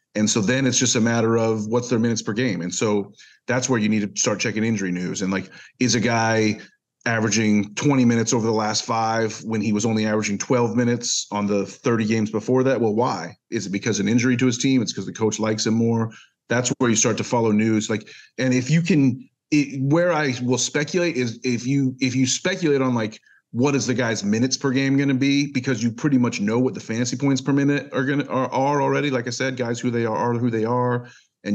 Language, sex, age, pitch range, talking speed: English, male, 30-49, 110-130 Hz, 245 wpm